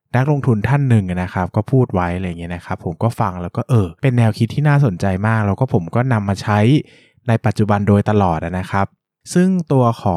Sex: male